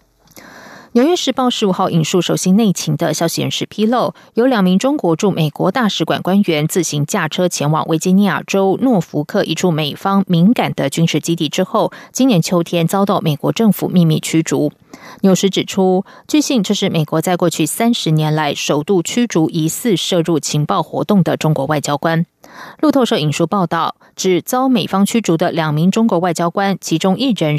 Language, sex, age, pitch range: Chinese, female, 20-39, 160-205 Hz